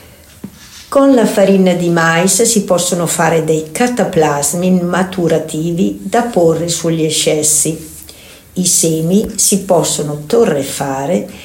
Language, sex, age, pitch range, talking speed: Italian, female, 50-69, 150-205 Hz, 105 wpm